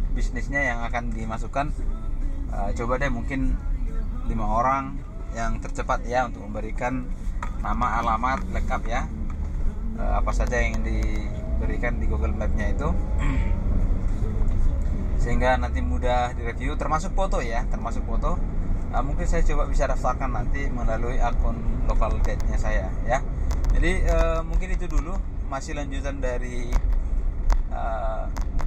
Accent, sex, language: Indonesian, male, English